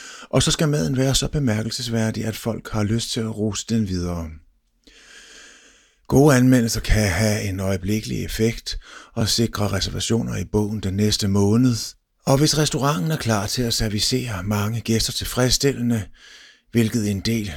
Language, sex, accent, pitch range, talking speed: Danish, male, native, 100-120 Hz, 155 wpm